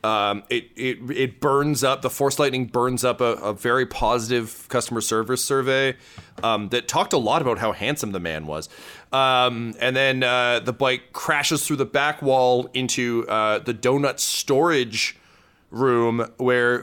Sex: male